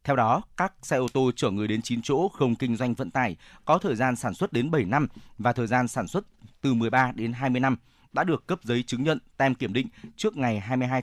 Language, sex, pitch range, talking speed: Vietnamese, male, 120-140 Hz, 250 wpm